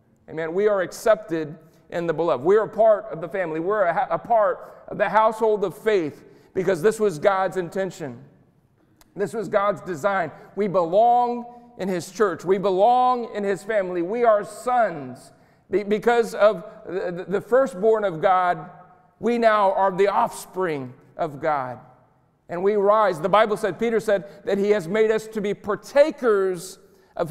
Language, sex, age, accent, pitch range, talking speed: English, male, 40-59, American, 180-215 Hz, 175 wpm